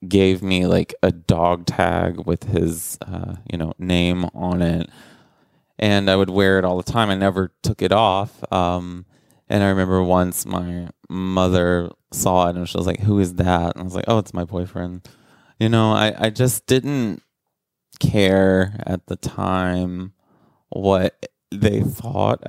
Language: English